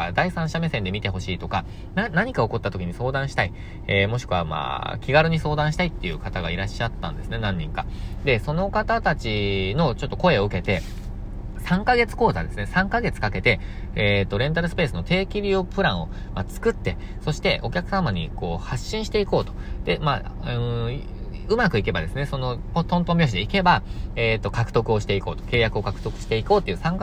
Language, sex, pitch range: Japanese, male, 95-150 Hz